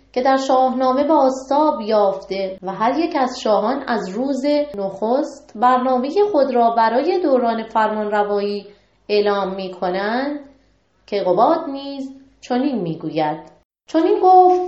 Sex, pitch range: female, 220-275 Hz